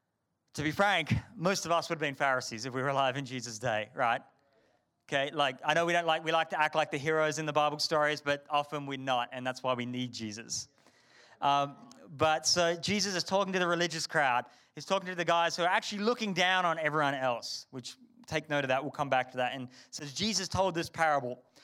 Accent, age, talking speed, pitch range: Australian, 30-49, 235 wpm, 140-180 Hz